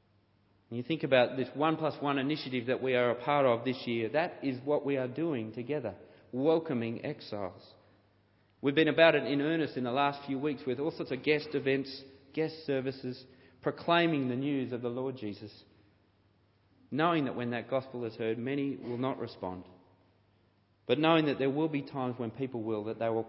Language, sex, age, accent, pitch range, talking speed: English, male, 40-59, Australian, 105-155 Hz, 195 wpm